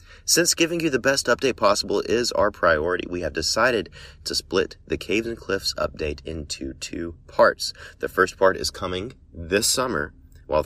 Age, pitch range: 30-49, 80-100 Hz